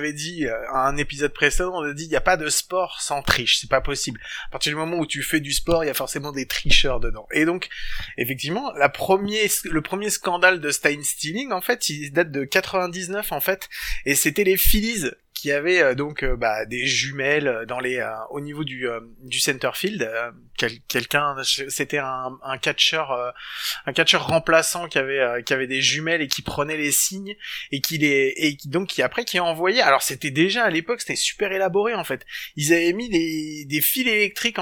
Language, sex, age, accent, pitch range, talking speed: French, male, 20-39, French, 140-190 Hz, 215 wpm